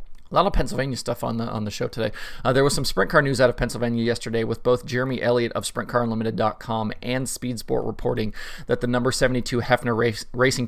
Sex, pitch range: male, 110-125 Hz